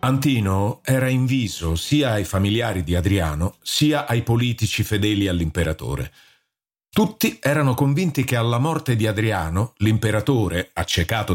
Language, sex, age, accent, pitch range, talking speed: Italian, male, 50-69, native, 95-130 Hz, 120 wpm